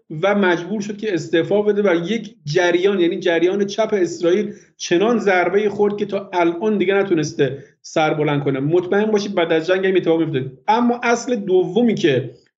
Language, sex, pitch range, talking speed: Persian, male, 155-205 Hz, 165 wpm